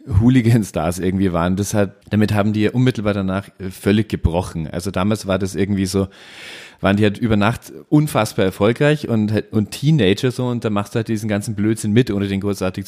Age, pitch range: 30-49, 100-115 Hz